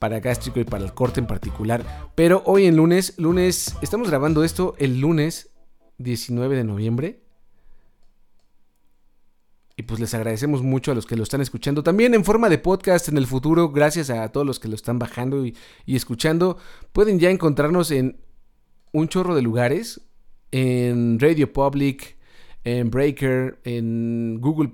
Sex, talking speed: male, 160 wpm